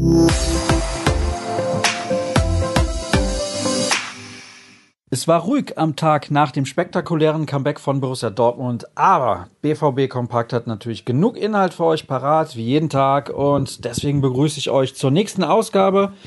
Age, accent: 40-59, German